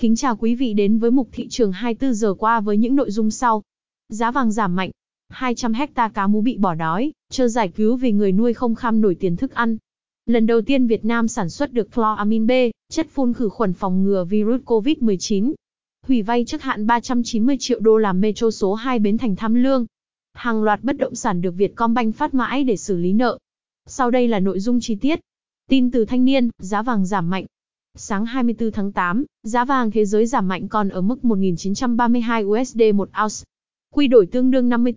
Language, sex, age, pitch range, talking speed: Vietnamese, female, 20-39, 205-250 Hz, 210 wpm